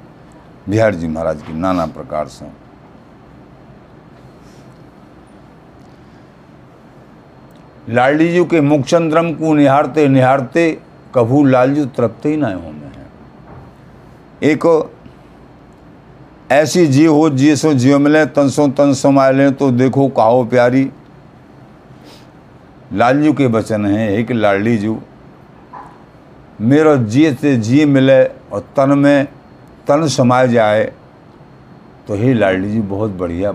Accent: native